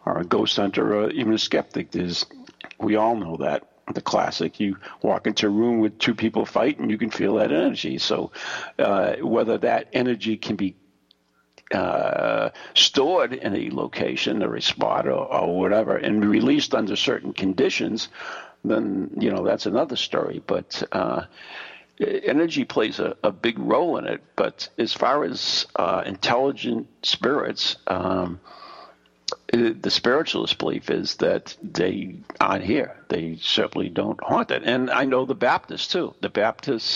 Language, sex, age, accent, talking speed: English, male, 60-79, American, 160 wpm